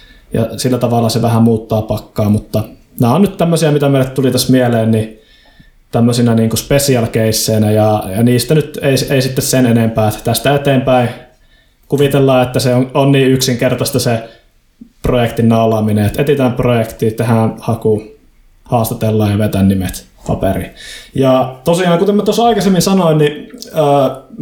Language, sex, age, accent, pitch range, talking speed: Finnish, male, 20-39, native, 115-140 Hz, 155 wpm